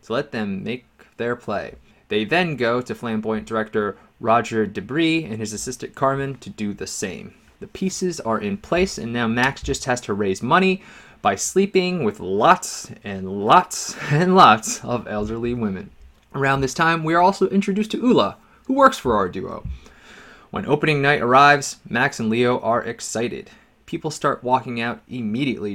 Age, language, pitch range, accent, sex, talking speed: 20-39, English, 110-170 Hz, American, male, 170 wpm